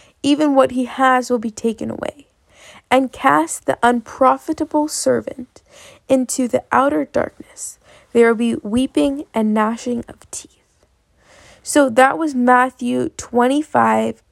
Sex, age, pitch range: female, 20-39, 225-260 Hz